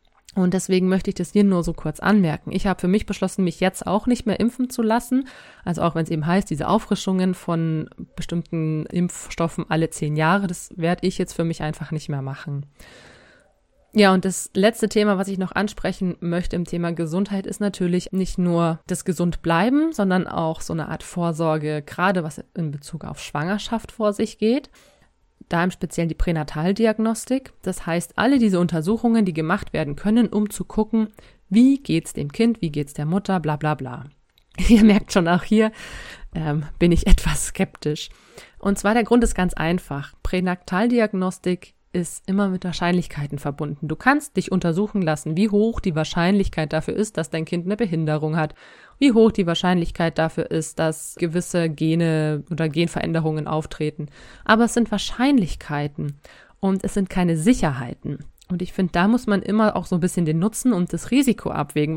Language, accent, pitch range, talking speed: German, German, 160-205 Hz, 185 wpm